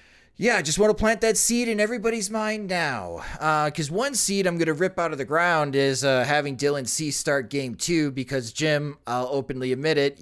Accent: American